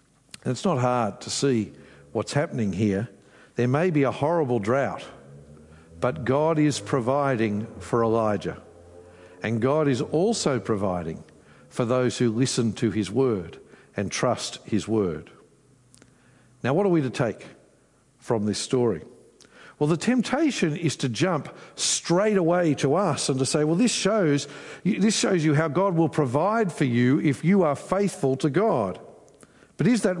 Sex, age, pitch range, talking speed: male, 50-69, 125-175 Hz, 155 wpm